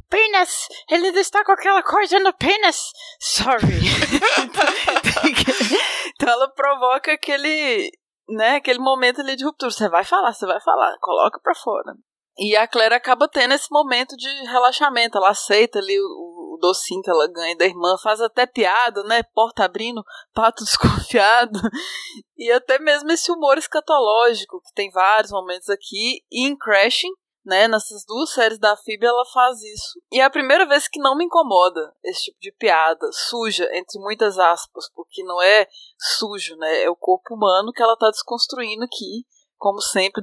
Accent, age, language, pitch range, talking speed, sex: Brazilian, 20-39, Portuguese, 210-300 Hz, 165 wpm, female